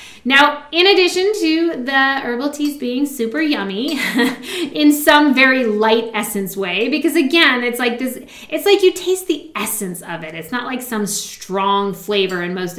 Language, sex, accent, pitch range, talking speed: English, female, American, 210-280 Hz, 175 wpm